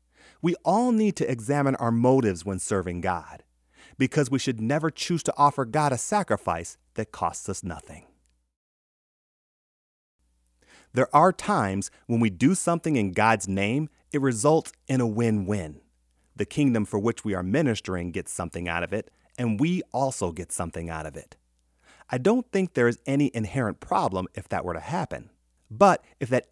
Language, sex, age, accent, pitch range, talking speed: English, male, 30-49, American, 90-140 Hz, 170 wpm